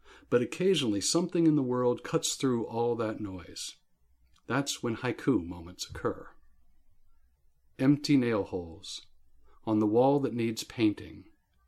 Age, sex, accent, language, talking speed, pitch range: 50-69, male, American, English, 130 wpm, 90-130 Hz